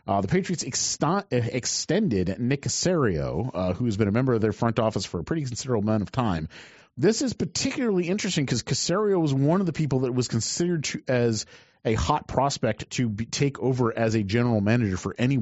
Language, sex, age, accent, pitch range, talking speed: English, male, 40-59, American, 100-135 Hz, 190 wpm